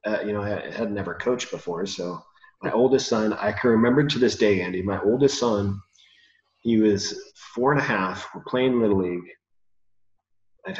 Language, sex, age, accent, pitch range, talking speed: English, male, 30-49, American, 100-115 Hz, 180 wpm